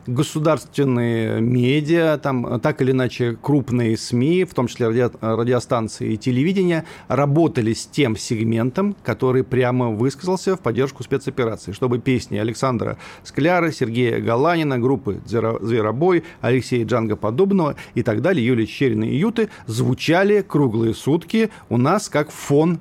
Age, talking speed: 40-59, 130 wpm